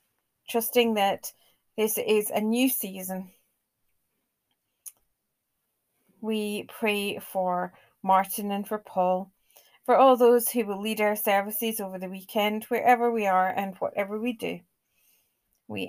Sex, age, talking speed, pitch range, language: female, 40-59, 125 wpm, 195-235 Hz, English